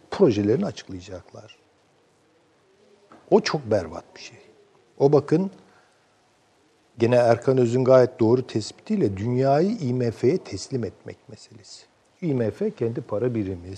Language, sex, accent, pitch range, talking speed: Turkish, male, native, 105-170 Hz, 105 wpm